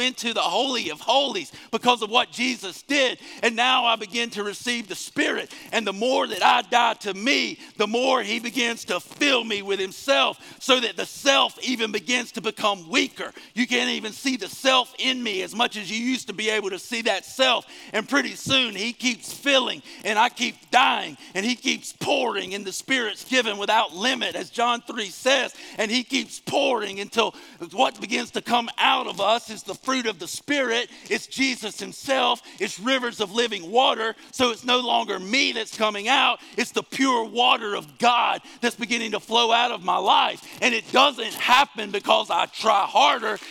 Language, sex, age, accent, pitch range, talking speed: English, male, 50-69, American, 215-260 Hz, 200 wpm